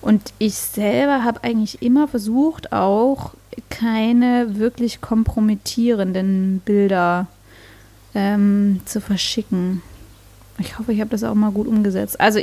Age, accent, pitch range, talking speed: 20-39, German, 190-220 Hz, 120 wpm